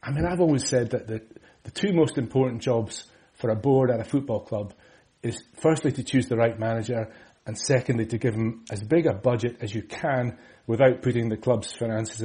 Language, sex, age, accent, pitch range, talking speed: English, male, 30-49, British, 110-130 Hz, 210 wpm